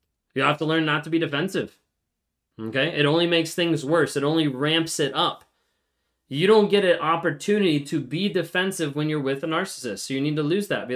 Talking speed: 215 wpm